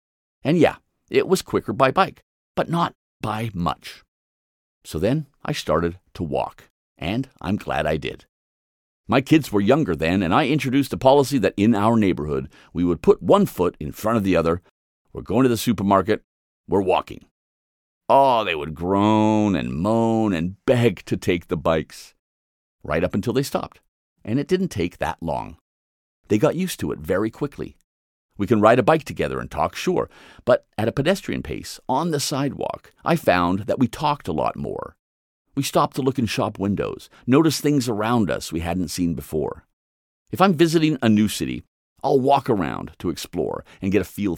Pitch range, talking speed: 85-140 Hz, 185 wpm